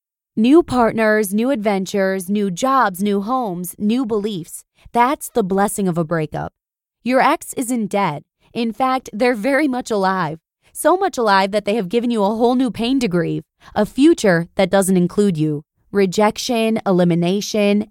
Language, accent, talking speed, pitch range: English, American, 165 wpm, 185-250 Hz